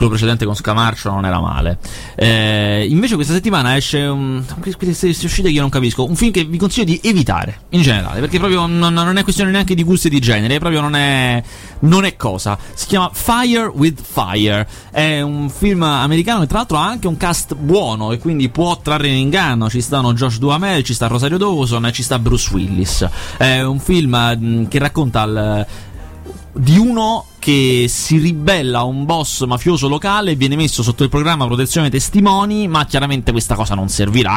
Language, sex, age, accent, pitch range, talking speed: Italian, male, 30-49, native, 110-155 Hz, 195 wpm